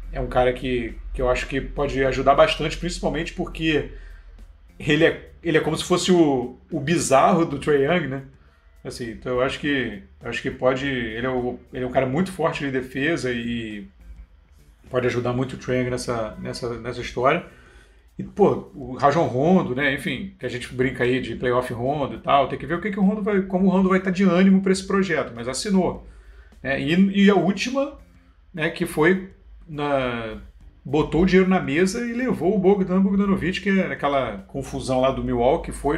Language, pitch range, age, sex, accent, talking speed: Portuguese, 125-180 Hz, 40-59, male, Brazilian, 205 wpm